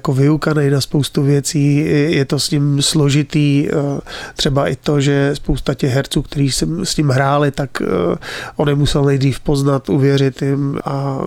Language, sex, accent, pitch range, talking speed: Czech, male, native, 140-150 Hz, 160 wpm